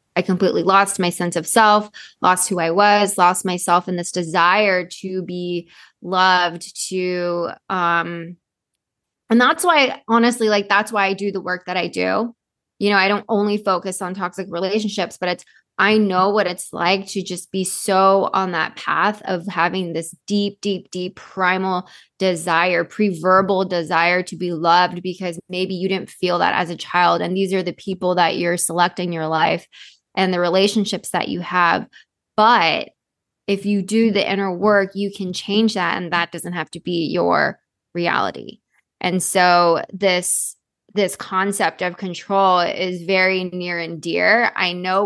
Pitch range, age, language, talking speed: 175-195 Hz, 20-39, English, 175 wpm